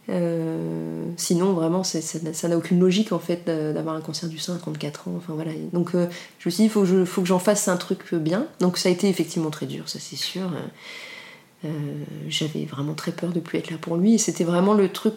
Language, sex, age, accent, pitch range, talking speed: French, female, 30-49, French, 165-205 Hz, 250 wpm